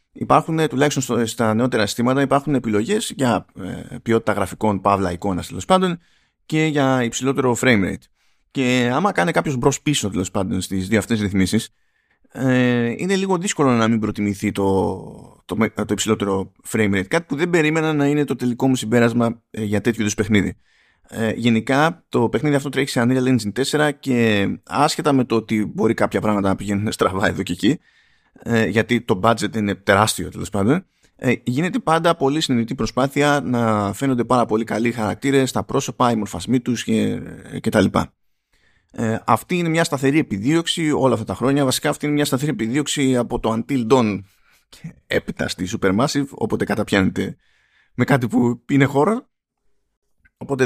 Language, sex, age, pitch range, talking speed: Greek, male, 30-49, 110-140 Hz, 165 wpm